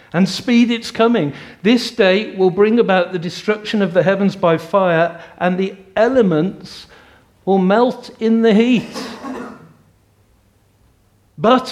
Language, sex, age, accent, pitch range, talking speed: English, male, 50-69, British, 125-185 Hz, 130 wpm